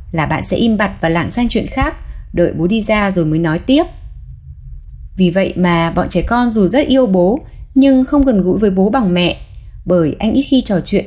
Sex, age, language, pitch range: female, 20-39, Vietnamese, 170-235 Hz